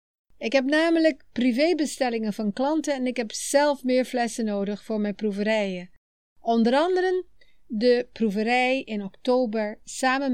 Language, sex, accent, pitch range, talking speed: Dutch, female, Dutch, 205-275 Hz, 135 wpm